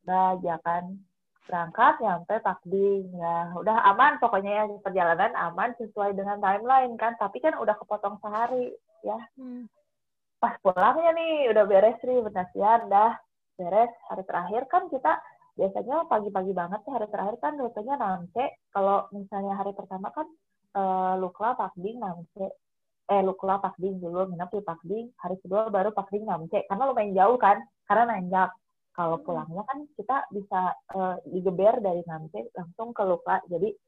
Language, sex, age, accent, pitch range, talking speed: Indonesian, female, 20-39, native, 185-245 Hz, 160 wpm